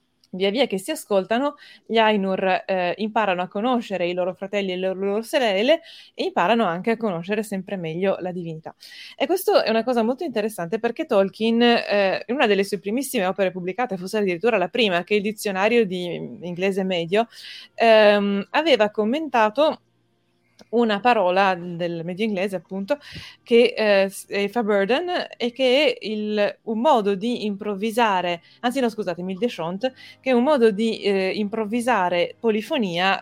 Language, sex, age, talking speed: Italian, female, 20-39, 160 wpm